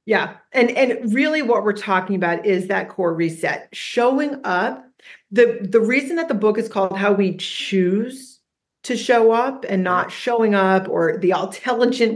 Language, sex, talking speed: English, female, 175 wpm